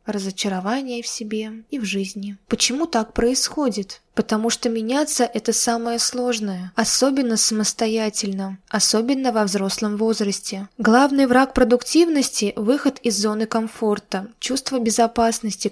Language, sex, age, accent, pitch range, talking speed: Russian, female, 20-39, native, 215-255 Hz, 120 wpm